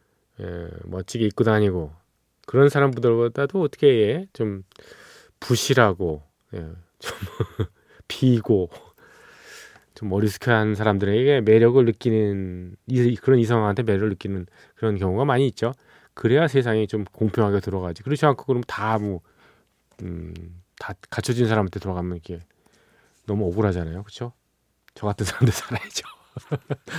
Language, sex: Korean, male